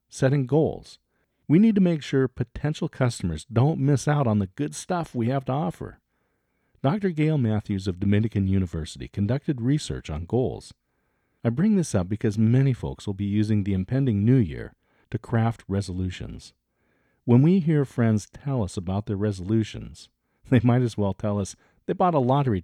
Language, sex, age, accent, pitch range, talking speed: English, male, 40-59, American, 100-135 Hz, 175 wpm